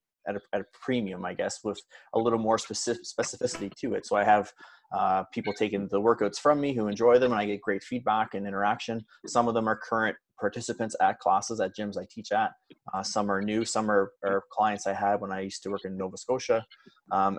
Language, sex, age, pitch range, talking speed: English, male, 20-39, 100-115 Hz, 230 wpm